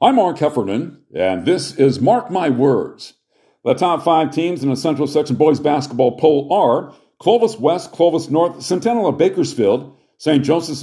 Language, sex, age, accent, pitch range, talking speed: English, male, 50-69, American, 145-180 Hz, 165 wpm